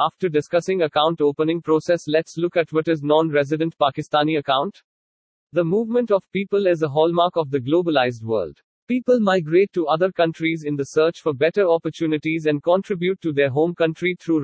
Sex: male